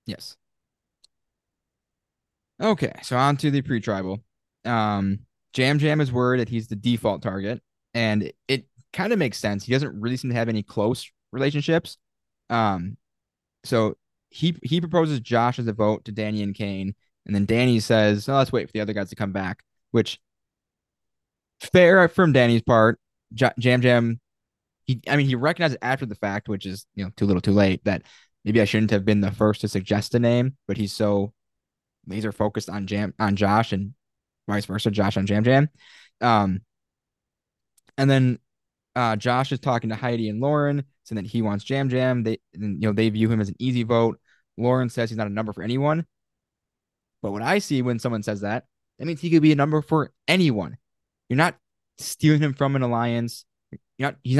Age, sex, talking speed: 20-39, male, 190 wpm